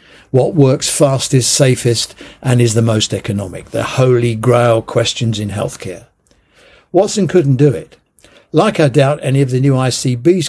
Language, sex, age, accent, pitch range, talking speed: English, male, 60-79, British, 115-155 Hz, 155 wpm